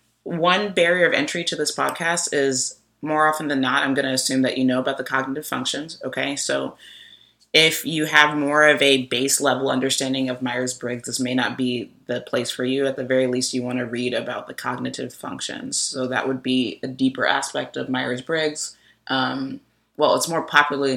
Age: 30-49